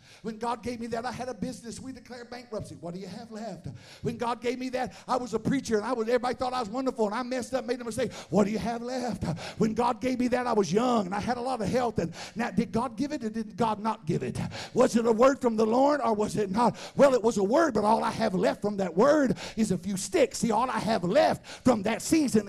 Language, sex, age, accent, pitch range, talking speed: English, male, 50-69, American, 220-280 Hz, 290 wpm